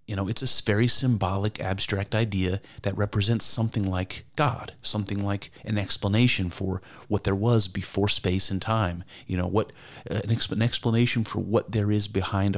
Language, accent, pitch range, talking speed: English, American, 95-120 Hz, 170 wpm